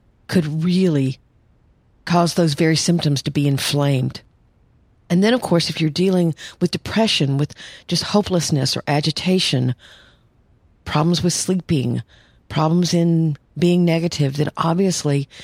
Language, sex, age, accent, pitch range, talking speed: English, female, 50-69, American, 140-170 Hz, 125 wpm